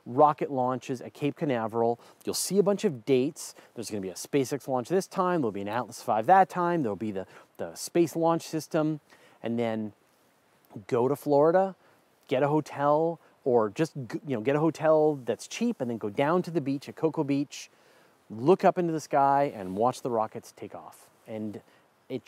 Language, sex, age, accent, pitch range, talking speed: English, male, 30-49, American, 115-170 Hz, 195 wpm